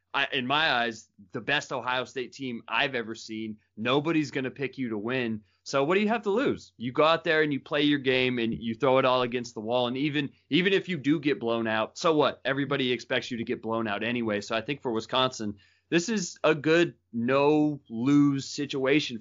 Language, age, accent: English, 30-49, American